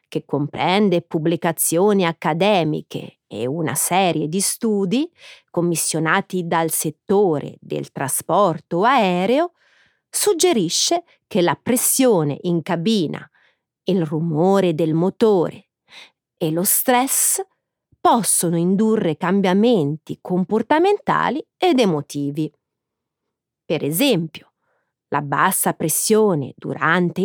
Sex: female